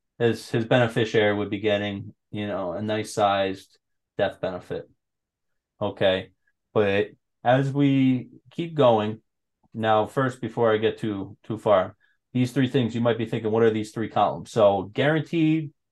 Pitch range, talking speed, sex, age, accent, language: 105-125 Hz, 150 wpm, male, 20-39, American, English